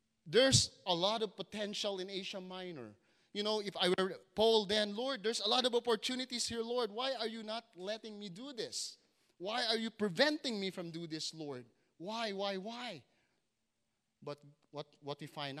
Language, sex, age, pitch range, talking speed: English, male, 30-49, 130-200 Hz, 185 wpm